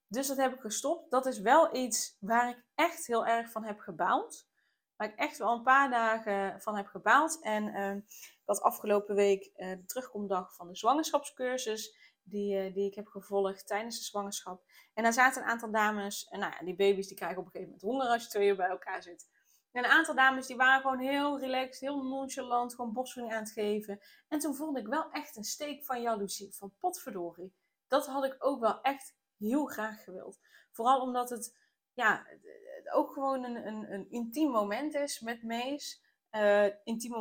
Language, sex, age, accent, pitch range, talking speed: Dutch, female, 20-39, Dutch, 200-260 Hz, 195 wpm